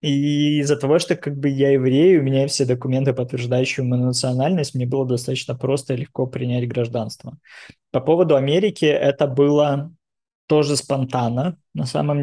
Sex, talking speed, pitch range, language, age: male, 155 wpm, 130-145 Hz, Russian, 20-39